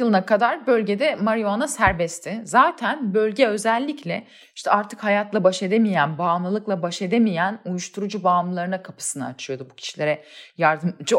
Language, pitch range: Turkish, 175-225 Hz